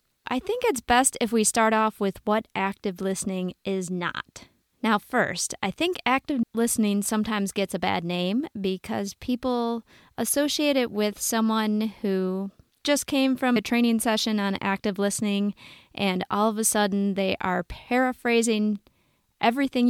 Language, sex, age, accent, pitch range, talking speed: English, female, 30-49, American, 190-235 Hz, 150 wpm